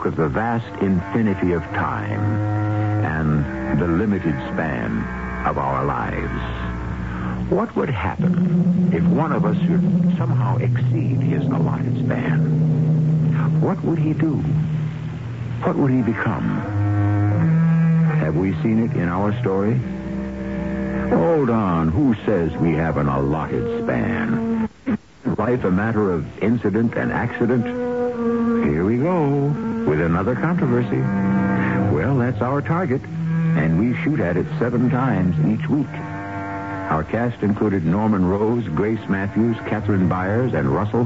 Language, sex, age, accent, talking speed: English, male, 60-79, American, 125 wpm